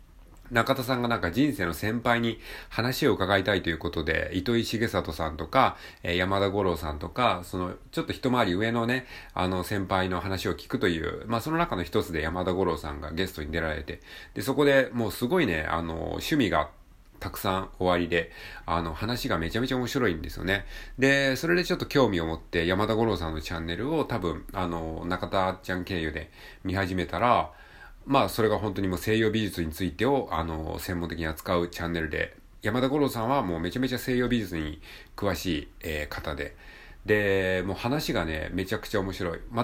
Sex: male